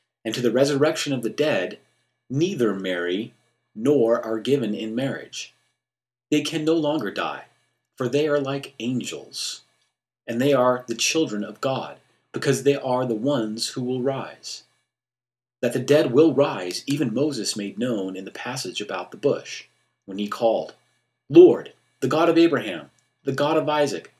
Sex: male